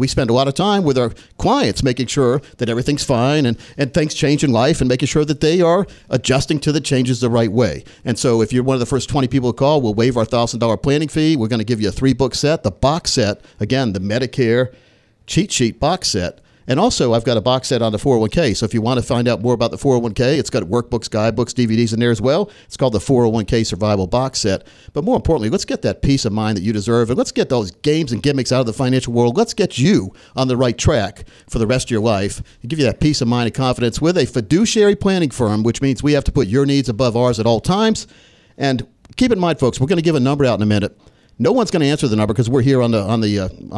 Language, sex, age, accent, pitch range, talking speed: English, male, 50-69, American, 115-145 Hz, 275 wpm